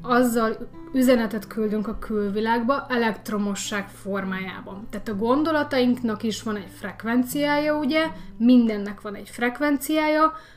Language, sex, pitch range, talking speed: Hungarian, female, 210-250 Hz, 110 wpm